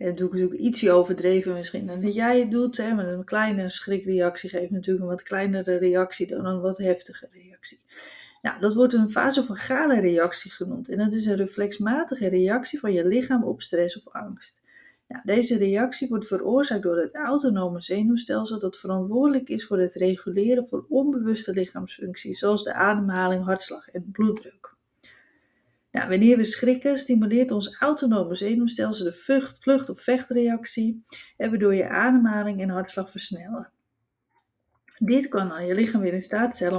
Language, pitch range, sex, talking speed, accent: Dutch, 185-235 Hz, female, 165 wpm, Dutch